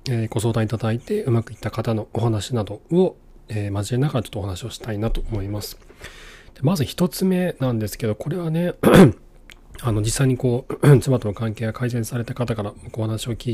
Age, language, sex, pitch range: 40-59, Japanese, male, 105-140 Hz